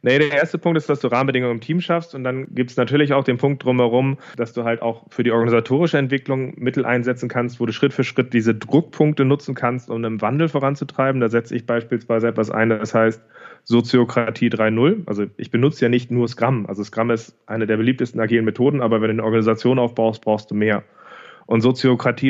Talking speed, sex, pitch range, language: 215 wpm, male, 115-135 Hz, German